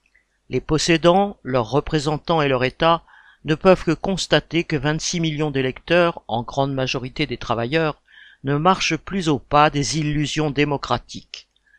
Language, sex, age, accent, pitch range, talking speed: French, male, 50-69, French, 140-175 Hz, 145 wpm